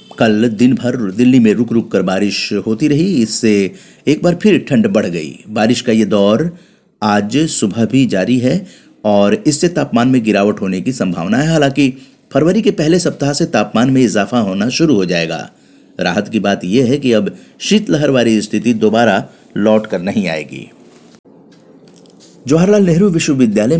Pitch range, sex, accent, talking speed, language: 110-160 Hz, male, native, 160 wpm, Hindi